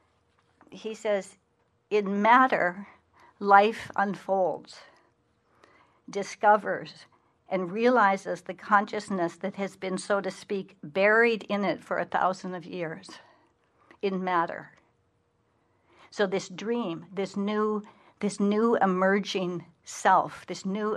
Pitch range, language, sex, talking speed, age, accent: 175-210 Hz, English, female, 110 wpm, 60-79, American